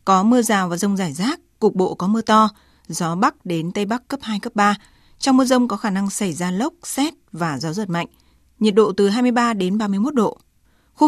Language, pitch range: Vietnamese, 185-235 Hz